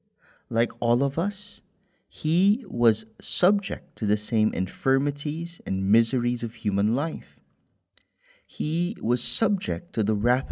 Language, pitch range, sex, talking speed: English, 95-130 Hz, male, 125 wpm